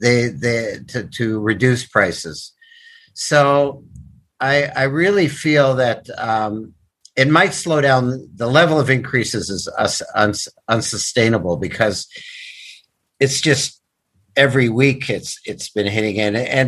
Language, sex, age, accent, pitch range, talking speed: English, male, 50-69, American, 110-135 Hz, 120 wpm